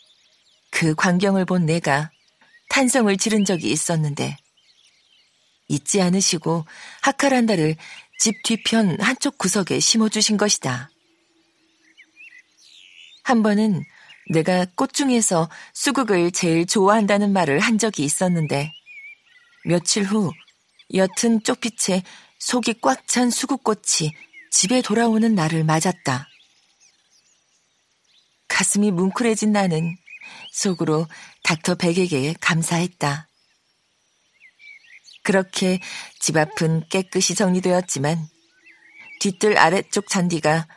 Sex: female